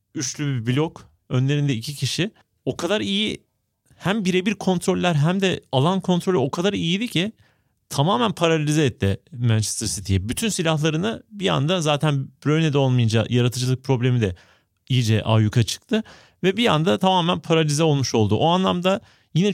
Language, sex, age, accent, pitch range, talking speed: Turkish, male, 30-49, native, 125-185 Hz, 145 wpm